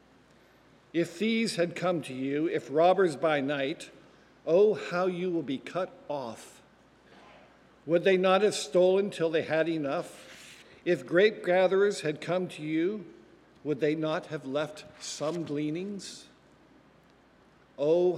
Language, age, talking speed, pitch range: English, 50-69, 135 wpm, 145-180 Hz